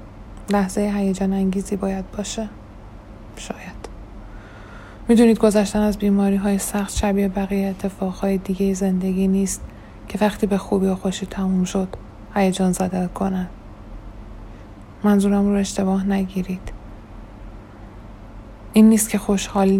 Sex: female